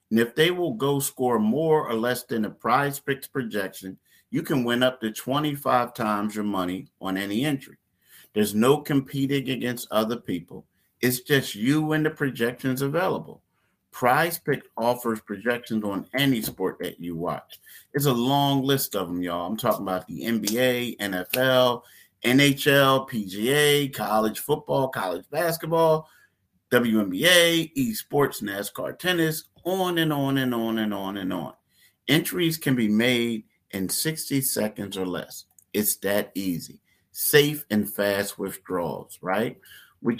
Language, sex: English, male